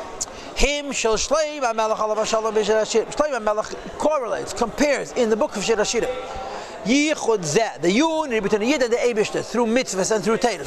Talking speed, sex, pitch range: 170 wpm, male, 200-255 Hz